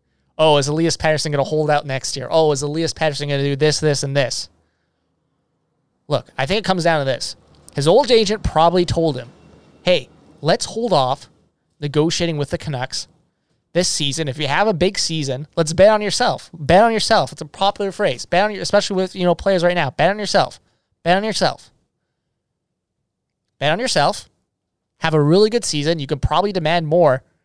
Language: English